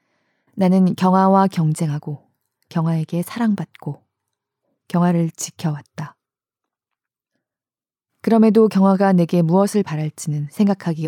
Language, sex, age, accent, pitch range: Korean, female, 20-39, native, 160-195 Hz